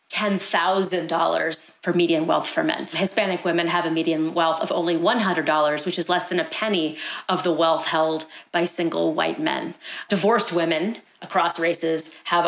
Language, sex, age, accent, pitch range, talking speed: English, female, 30-49, American, 165-210 Hz, 165 wpm